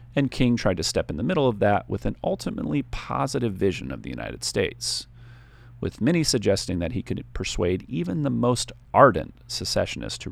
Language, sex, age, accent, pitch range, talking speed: English, male, 40-59, American, 95-120 Hz, 185 wpm